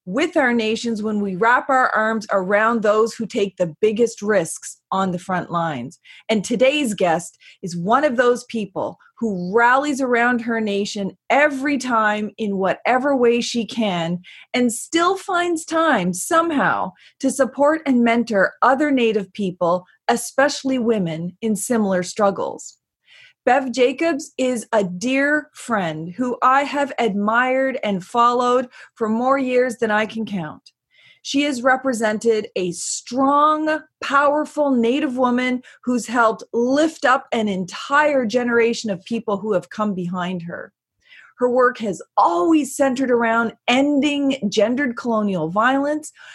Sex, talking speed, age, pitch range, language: female, 140 wpm, 30-49, 205-265 Hz, English